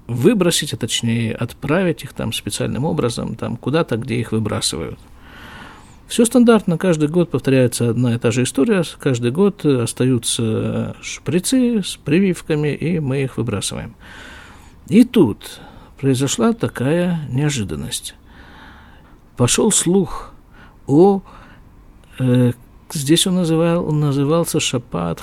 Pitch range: 115-155 Hz